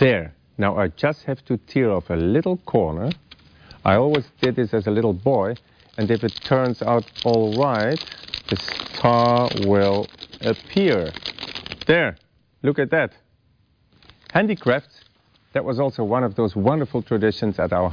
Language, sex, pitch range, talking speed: English, male, 100-125 Hz, 150 wpm